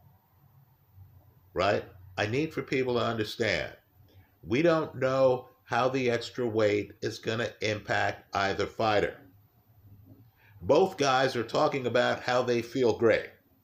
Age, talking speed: 50-69, 130 wpm